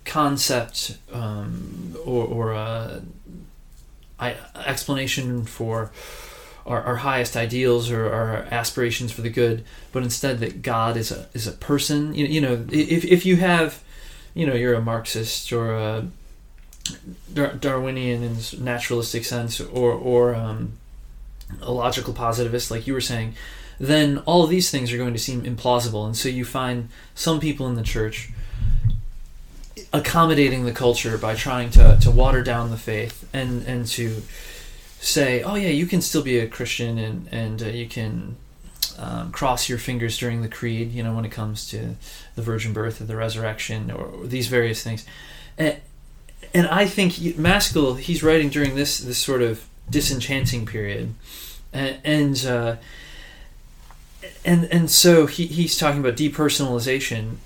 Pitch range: 115-140 Hz